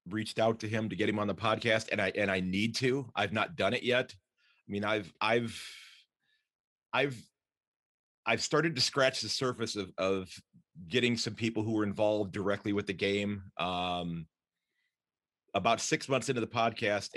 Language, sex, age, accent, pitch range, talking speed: English, male, 40-59, American, 105-125 Hz, 180 wpm